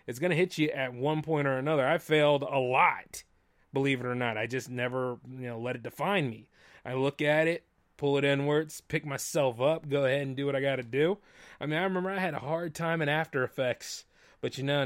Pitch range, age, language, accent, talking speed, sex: 125-160 Hz, 30-49, English, American, 245 wpm, male